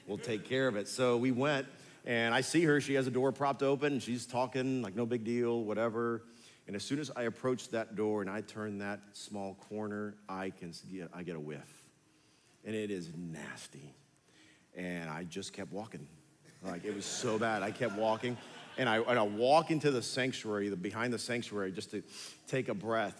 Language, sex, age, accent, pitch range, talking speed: English, male, 40-59, American, 105-140 Hz, 210 wpm